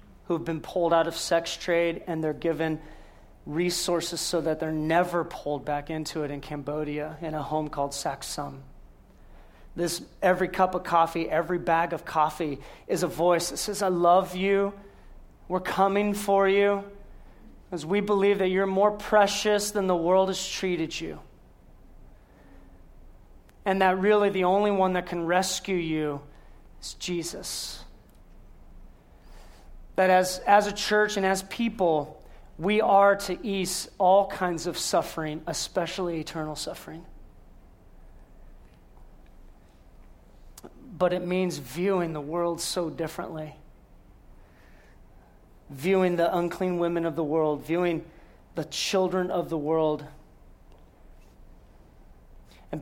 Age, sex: 30-49, male